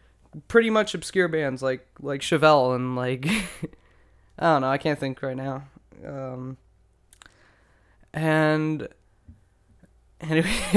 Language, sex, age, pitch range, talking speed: English, male, 10-29, 130-160 Hz, 110 wpm